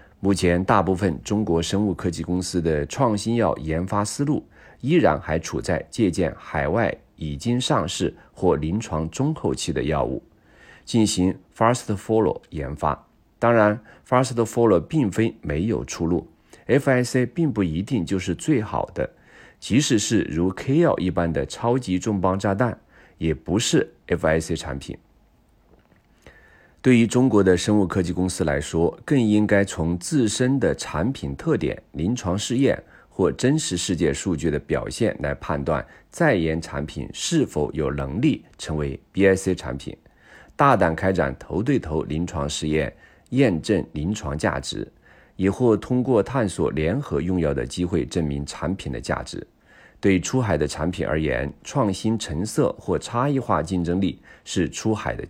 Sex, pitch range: male, 80-115 Hz